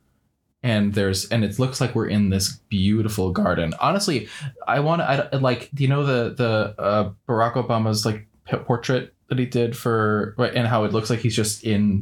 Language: English